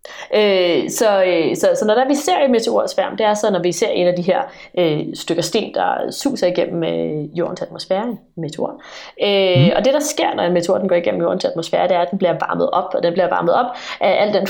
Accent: native